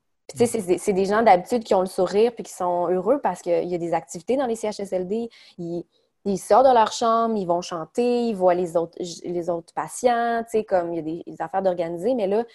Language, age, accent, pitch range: French, 20-39, Canadian, 175-205 Hz